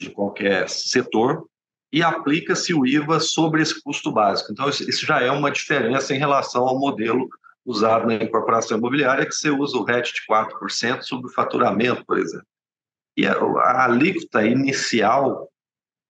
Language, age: Portuguese, 50-69